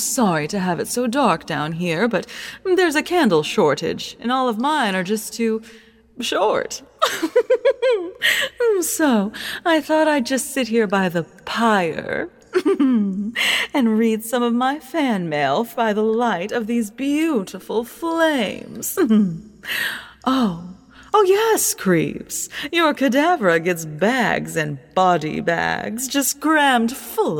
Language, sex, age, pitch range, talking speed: English, female, 30-49, 180-280 Hz, 130 wpm